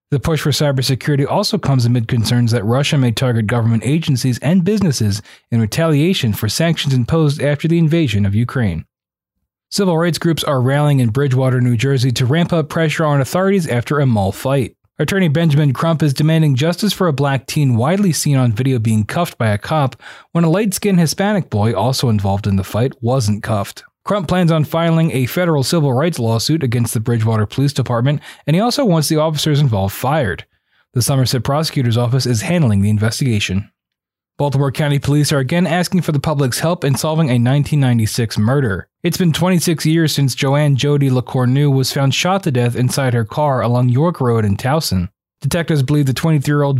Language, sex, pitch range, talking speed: English, male, 120-160 Hz, 185 wpm